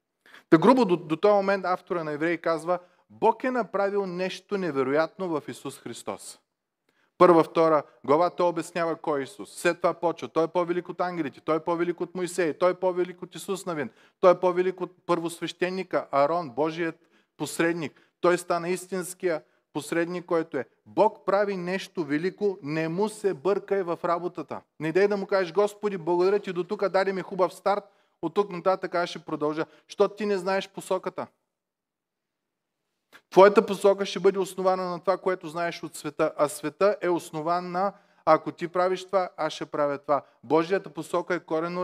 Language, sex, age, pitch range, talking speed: Bulgarian, male, 30-49, 155-190 Hz, 175 wpm